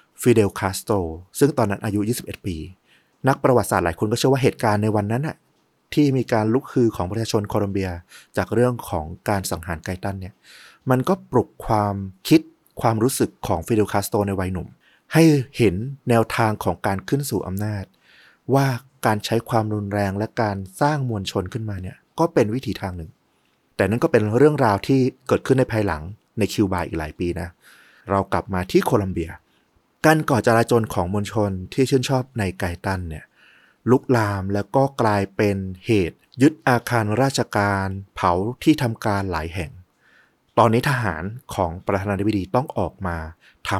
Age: 30-49